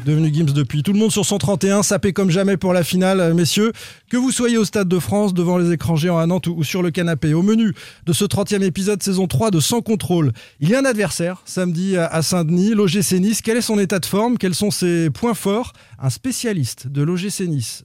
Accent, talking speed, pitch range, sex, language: French, 230 wpm, 155-205 Hz, male, French